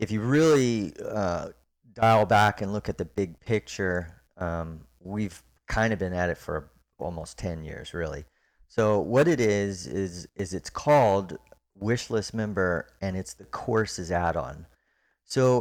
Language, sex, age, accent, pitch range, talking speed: English, male, 30-49, American, 90-110 Hz, 155 wpm